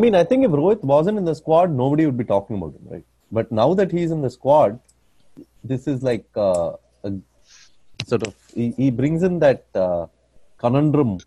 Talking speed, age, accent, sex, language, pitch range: 200 wpm, 30-49, Indian, male, English, 115-190 Hz